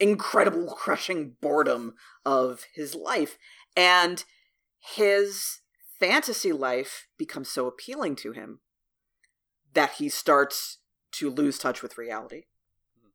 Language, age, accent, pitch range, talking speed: English, 40-59, American, 145-210 Hz, 105 wpm